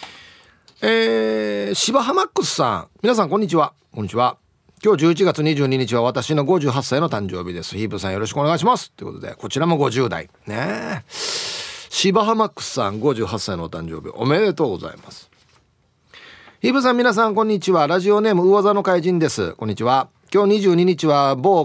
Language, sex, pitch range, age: Japanese, male, 115-190 Hz, 40-59